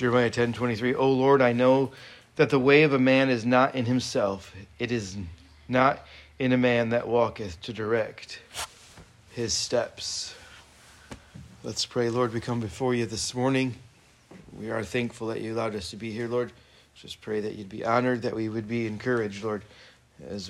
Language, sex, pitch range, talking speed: English, male, 105-125 Hz, 180 wpm